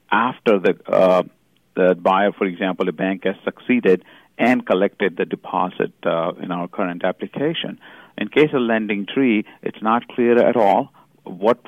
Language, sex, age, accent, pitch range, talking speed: English, male, 50-69, Indian, 95-115 Hz, 160 wpm